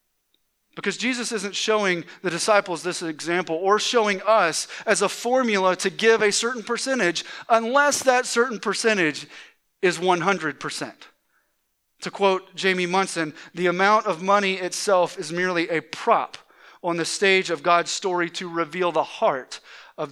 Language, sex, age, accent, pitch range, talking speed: English, male, 30-49, American, 170-215 Hz, 145 wpm